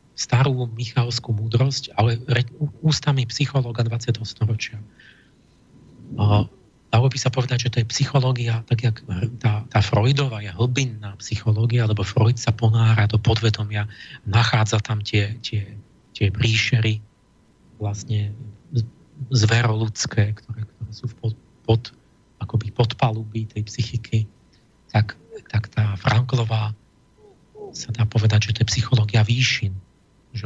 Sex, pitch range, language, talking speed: male, 110-125 Hz, Slovak, 120 wpm